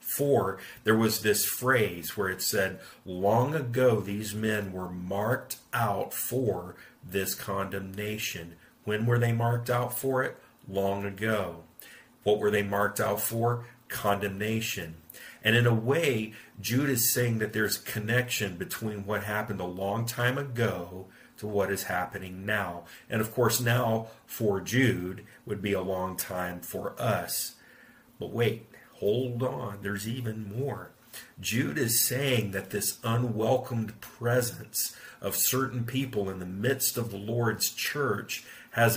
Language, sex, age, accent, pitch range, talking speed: English, male, 50-69, American, 95-120 Hz, 145 wpm